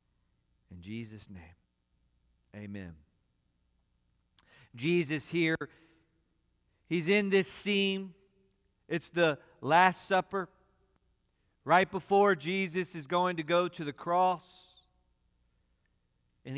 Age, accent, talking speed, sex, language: 40-59, American, 90 wpm, male, English